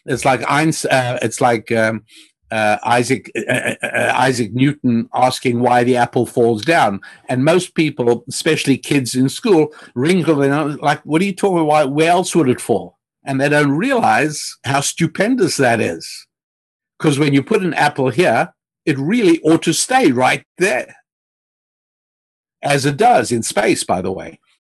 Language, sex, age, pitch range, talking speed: English, male, 60-79, 120-150 Hz, 170 wpm